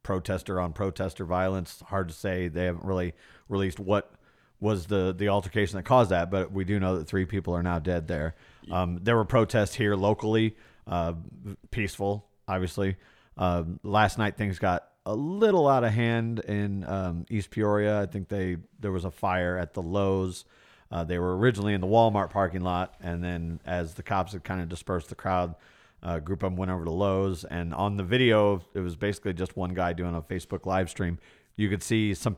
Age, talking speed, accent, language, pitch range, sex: 40-59, 205 wpm, American, English, 90-105 Hz, male